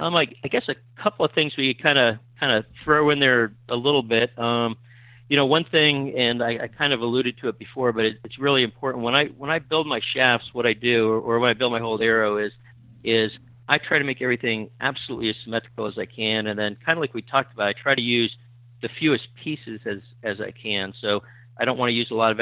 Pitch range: 105-120 Hz